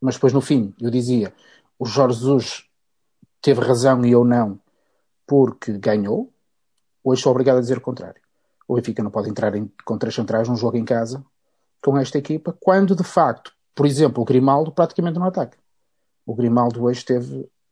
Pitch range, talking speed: 125-185 Hz, 180 wpm